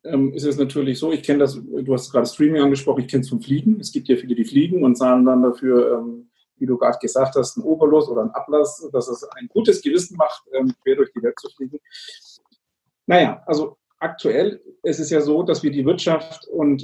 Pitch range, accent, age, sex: 135-190 Hz, German, 40-59, male